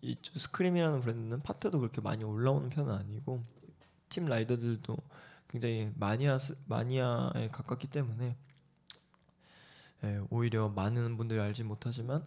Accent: native